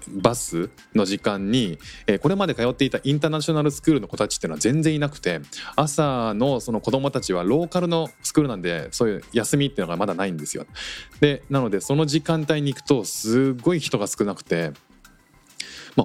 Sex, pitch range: male, 95-155 Hz